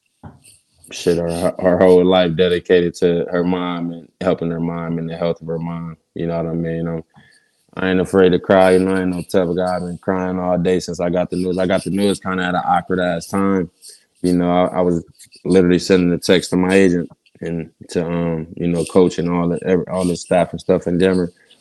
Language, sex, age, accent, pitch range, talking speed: English, male, 20-39, American, 85-95 Hz, 230 wpm